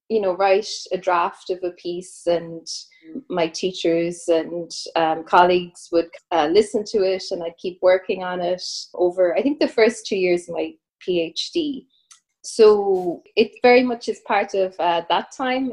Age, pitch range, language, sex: 20-39, 175-240 Hz, English, female